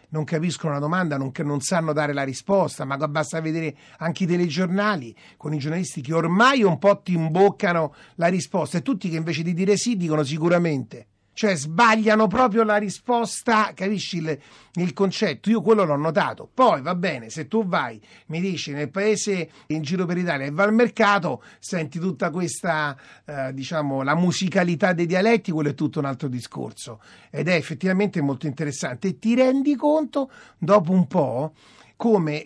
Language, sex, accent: Italian, male, native